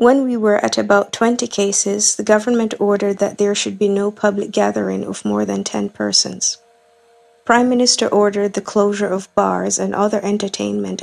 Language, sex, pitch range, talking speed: English, female, 185-220 Hz, 175 wpm